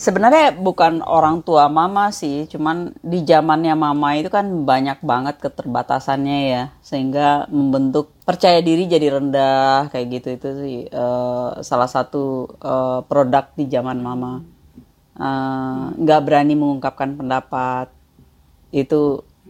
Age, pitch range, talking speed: 30-49, 130-155 Hz, 125 wpm